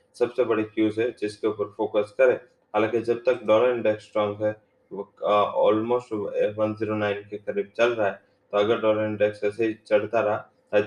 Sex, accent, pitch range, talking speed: male, Indian, 105-115 Hz, 180 wpm